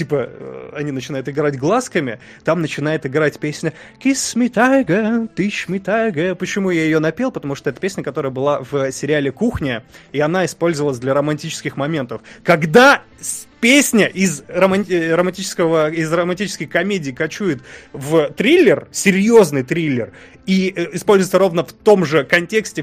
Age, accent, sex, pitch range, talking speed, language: 20-39, native, male, 150-205 Hz, 130 wpm, Russian